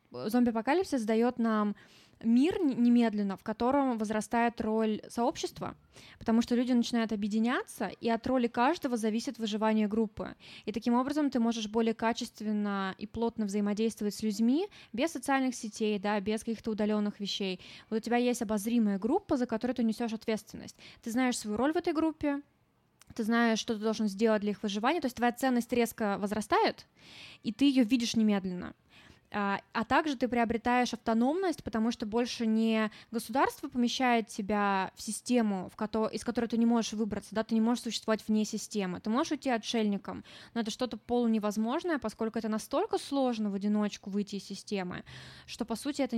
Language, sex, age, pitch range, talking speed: Russian, female, 20-39, 215-245 Hz, 165 wpm